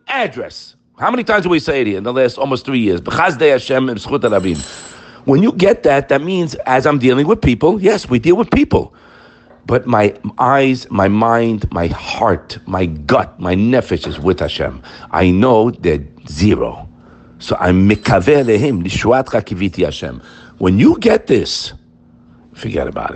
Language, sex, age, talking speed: English, male, 50-69, 150 wpm